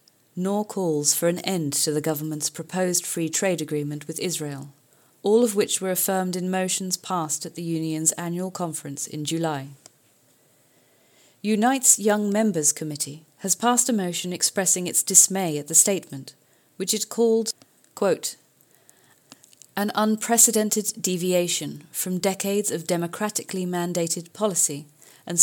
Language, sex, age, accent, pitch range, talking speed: English, female, 30-49, British, 160-200 Hz, 135 wpm